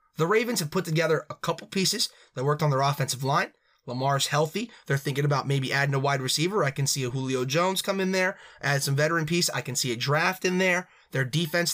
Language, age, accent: English, 20-39, American